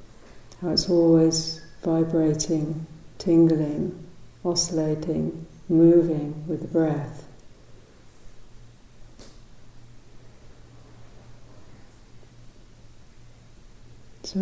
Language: English